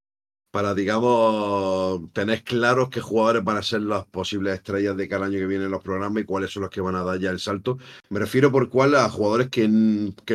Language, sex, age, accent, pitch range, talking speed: Spanish, male, 50-69, Spanish, 95-115 Hz, 230 wpm